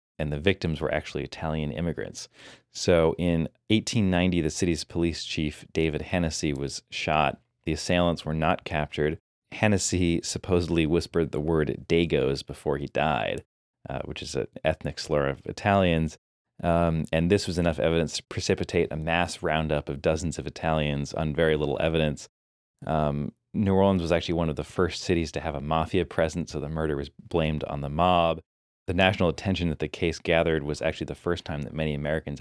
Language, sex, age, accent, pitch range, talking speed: English, male, 30-49, American, 75-85 Hz, 180 wpm